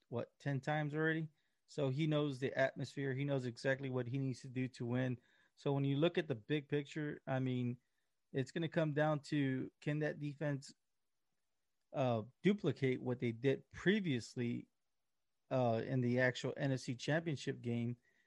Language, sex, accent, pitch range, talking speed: English, male, American, 125-150 Hz, 170 wpm